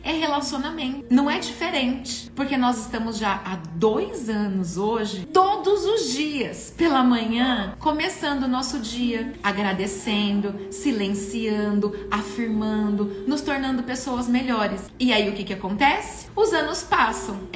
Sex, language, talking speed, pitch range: female, Portuguese, 130 wpm, 215-285 Hz